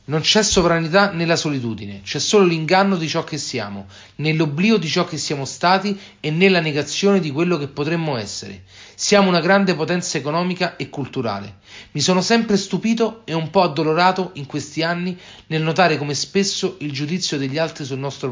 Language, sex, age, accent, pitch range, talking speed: Italian, male, 40-59, native, 140-195 Hz, 175 wpm